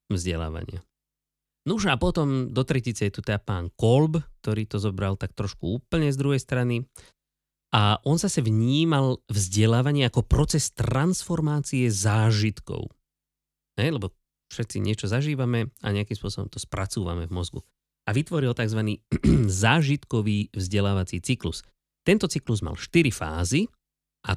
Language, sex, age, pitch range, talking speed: Slovak, male, 30-49, 100-140 Hz, 135 wpm